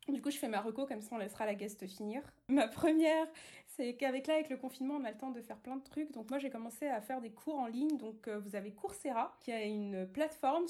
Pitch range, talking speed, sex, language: 210-265 Hz, 270 wpm, female, English